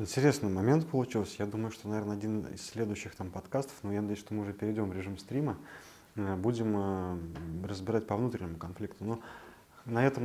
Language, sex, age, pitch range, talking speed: Russian, male, 20-39, 95-120 Hz, 180 wpm